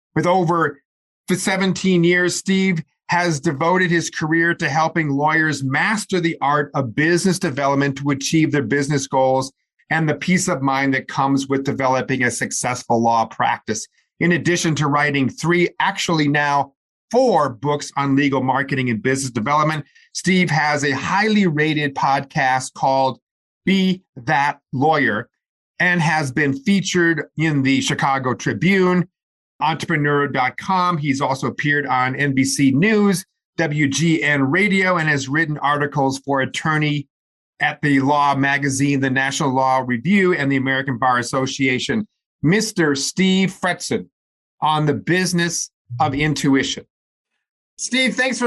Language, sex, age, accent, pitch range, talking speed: English, male, 40-59, American, 135-175 Hz, 130 wpm